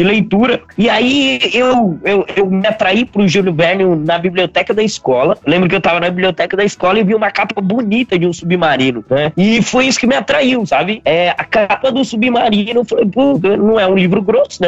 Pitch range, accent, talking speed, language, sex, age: 150-210 Hz, Brazilian, 215 wpm, Portuguese, male, 20-39